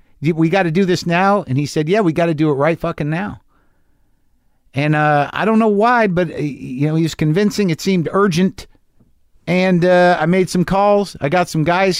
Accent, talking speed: American, 215 wpm